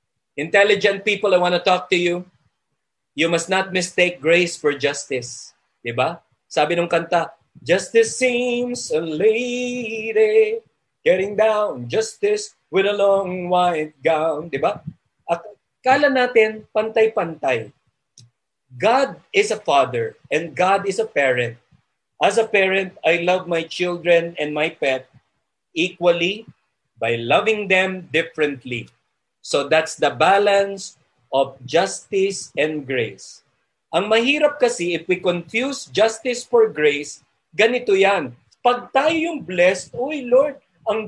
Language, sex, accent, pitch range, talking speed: Filipino, male, native, 155-220 Hz, 125 wpm